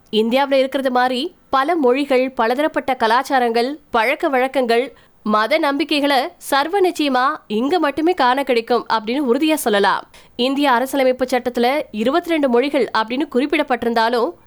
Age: 20-39